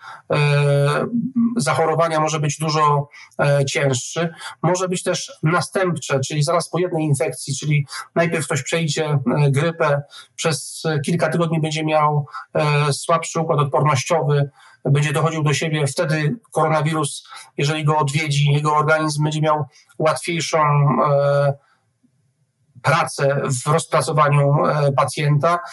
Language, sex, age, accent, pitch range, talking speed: Polish, male, 40-59, native, 140-165 Hz, 105 wpm